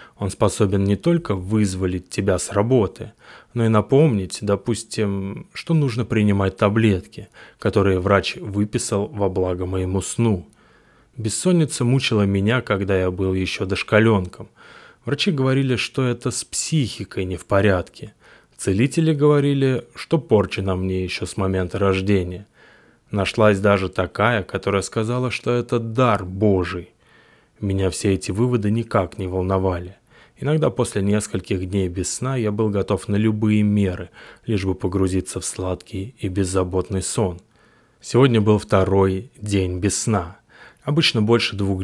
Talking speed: 135 wpm